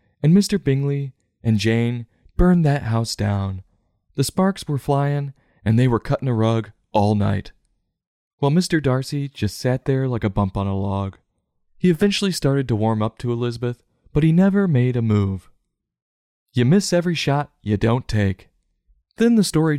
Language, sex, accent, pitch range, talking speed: English, male, American, 105-150 Hz, 175 wpm